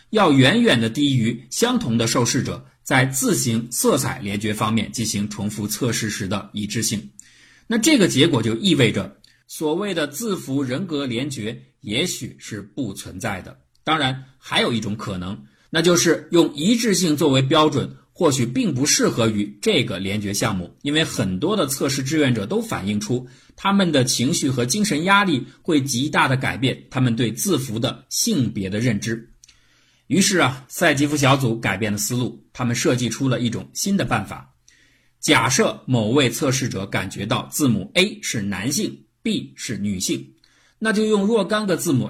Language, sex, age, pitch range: Chinese, male, 50-69, 110-155 Hz